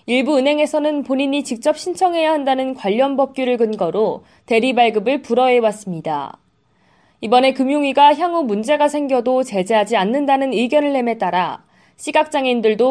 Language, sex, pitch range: Korean, female, 220-295 Hz